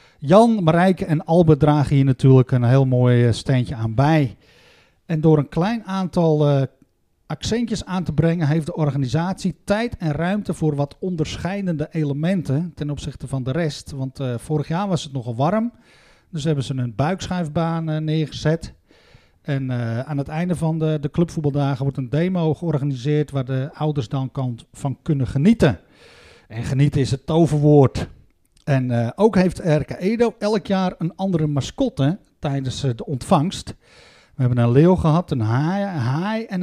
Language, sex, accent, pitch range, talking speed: Dutch, male, Dutch, 135-170 Hz, 165 wpm